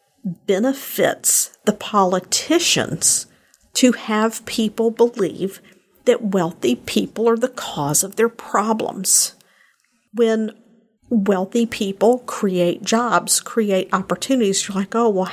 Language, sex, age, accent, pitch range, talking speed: English, female, 50-69, American, 195-230 Hz, 105 wpm